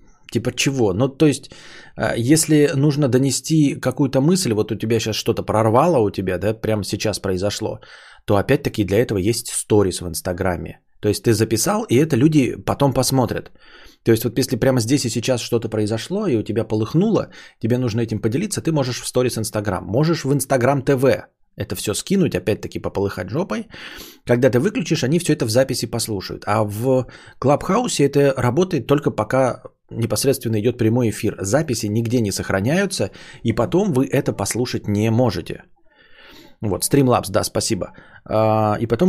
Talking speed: 165 wpm